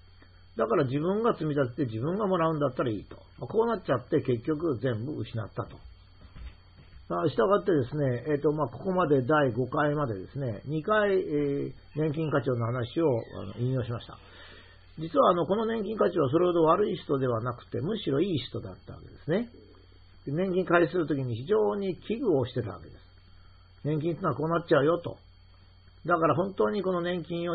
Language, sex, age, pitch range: Japanese, male, 50-69, 95-165 Hz